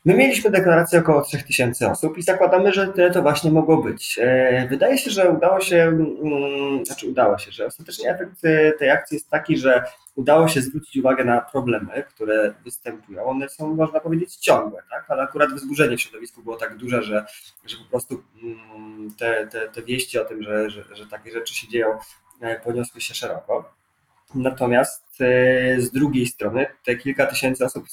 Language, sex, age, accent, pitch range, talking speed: Polish, male, 20-39, native, 120-155 Hz, 170 wpm